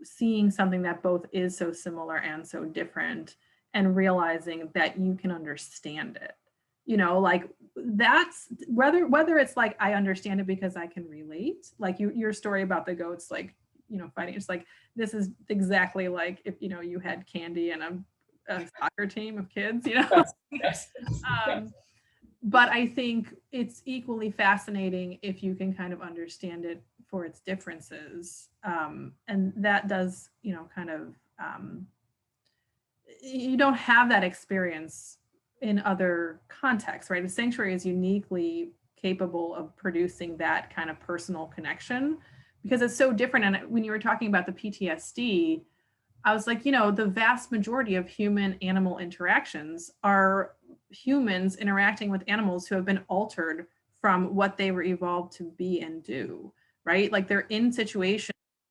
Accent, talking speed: American, 160 wpm